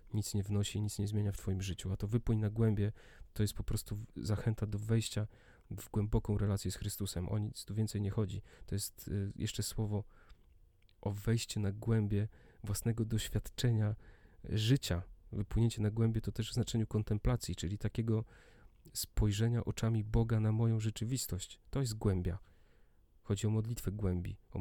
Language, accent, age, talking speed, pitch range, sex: Polish, native, 30-49, 165 wpm, 95-110 Hz, male